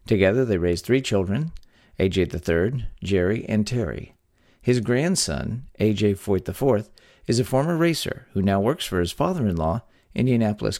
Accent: American